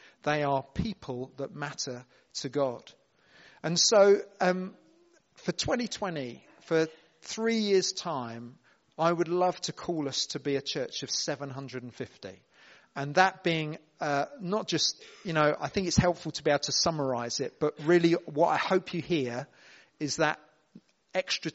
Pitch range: 140-170 Hz